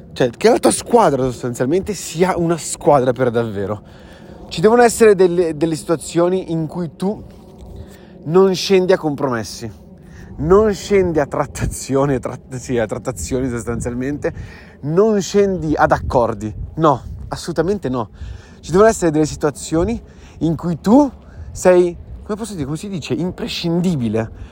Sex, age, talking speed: male, 30-49, 135 wpm